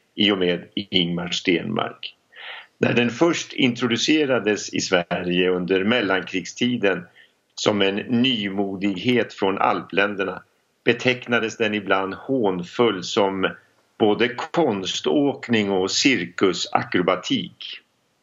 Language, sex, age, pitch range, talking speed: Swedish, male, 50-69, 90-115 Hz, 90 wpm